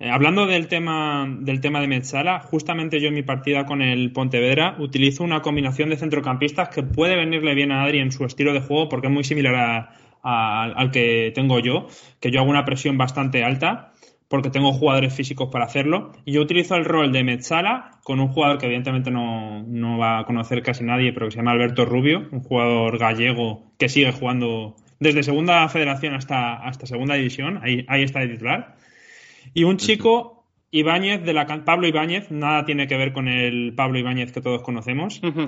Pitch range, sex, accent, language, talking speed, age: 125-155 Hz, male, Spanish, Spanish, 195 wpm, 20-39